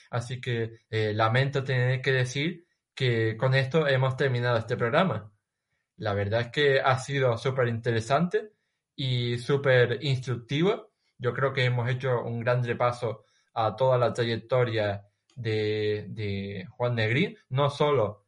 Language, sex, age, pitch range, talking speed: Spanish, male, 20-39, 115-135 Hz, 140 wpm